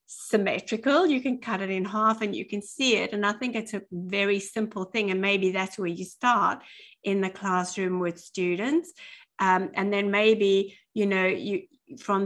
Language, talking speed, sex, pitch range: English, 190 wpm, female, 190-250 Hz